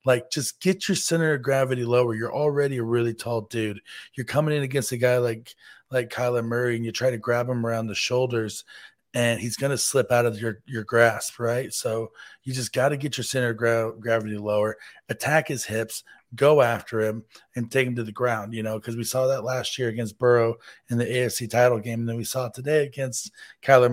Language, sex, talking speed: English, male, 230 wpm